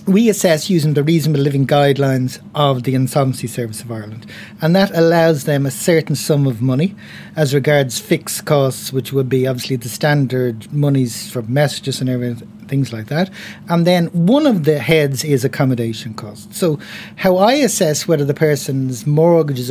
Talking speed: 175 wpm